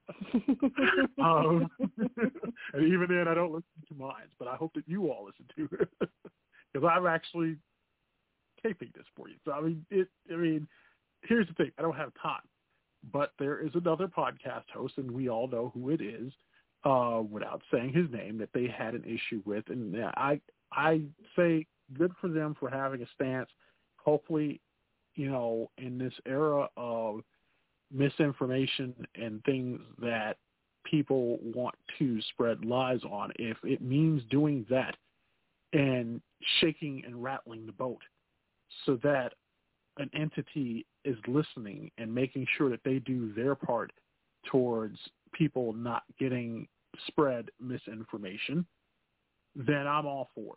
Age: 40-59